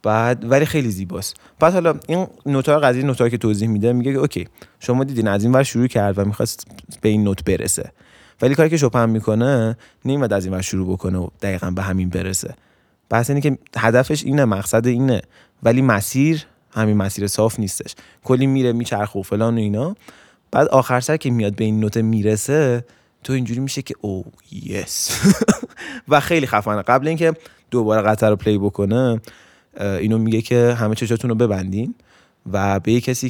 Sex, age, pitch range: male, 20-39, 100-125 Hz